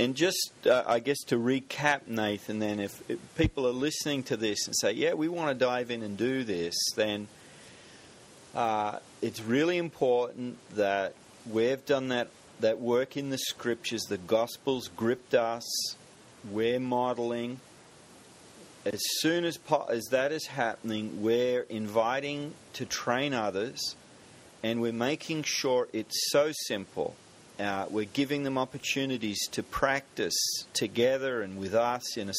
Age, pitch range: 40-59, 110-135 Hz